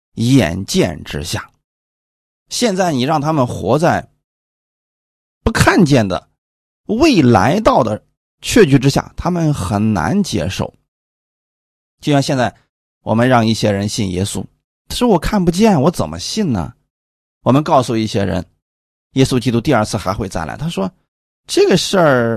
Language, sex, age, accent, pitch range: Chinese, male, 30-49, native, 95-155 Hz